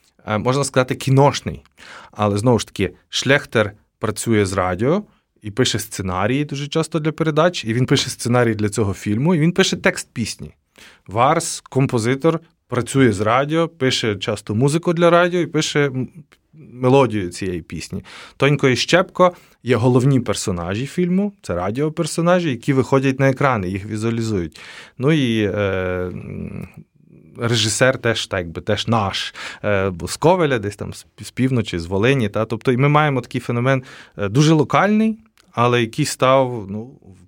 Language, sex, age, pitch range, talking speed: Ukrainian, male, 20-39, 100-135 Hz, 145 wpm